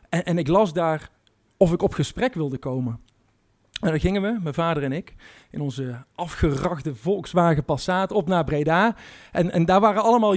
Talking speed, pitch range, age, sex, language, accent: 185 wpm, 155-200 Hz, 50-69, male, Dutch, Dutch